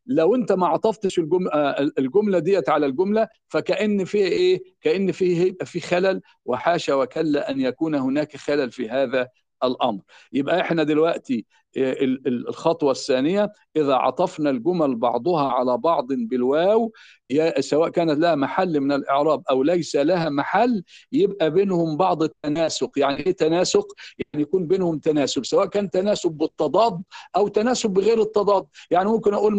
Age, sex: 50-69, male